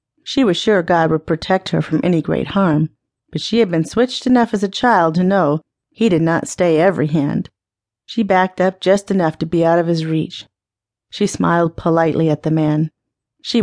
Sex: female